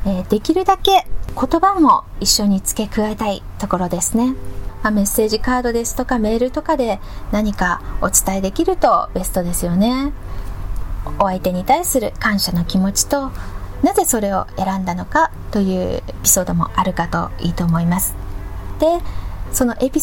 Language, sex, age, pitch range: Japanese, female, 20-39, 185-265 Hz